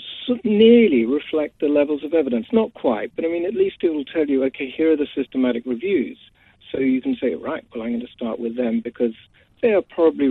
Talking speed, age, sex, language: 225 wpm, 50-69, male, English